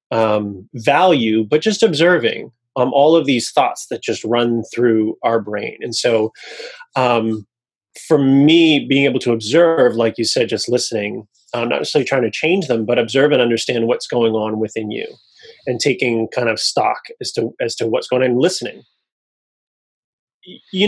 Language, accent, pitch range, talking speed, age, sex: English, American, 115-150 Hz, 175 wpm, 30-49, male